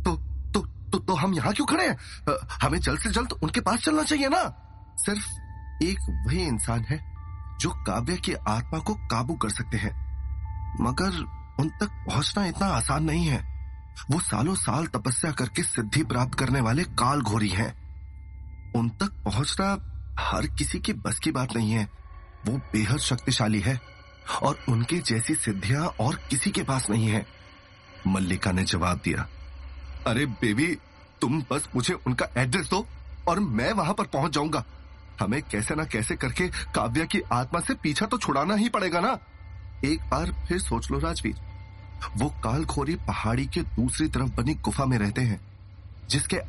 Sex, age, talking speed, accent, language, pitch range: male, 30-49, 165 wpm, native, Hindi, 90-140 Hz